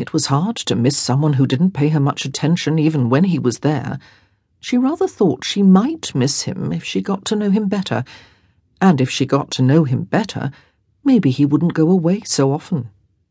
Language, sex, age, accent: English, female, 50-69, British